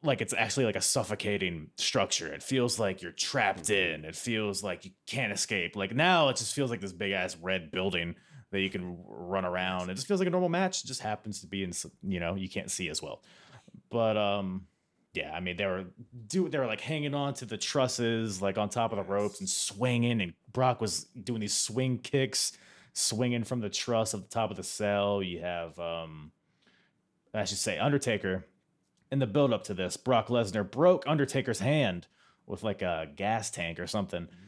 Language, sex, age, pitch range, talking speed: English, male, 20-39, 95-130 Hz, 210 wpm